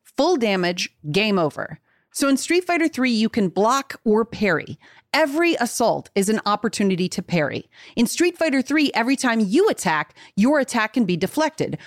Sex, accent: female, American